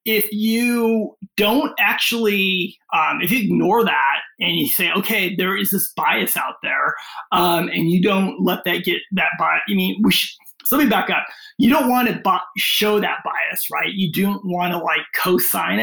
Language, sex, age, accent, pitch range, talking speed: English, male, 30-49, American, 190-240 Hz, 190 wpm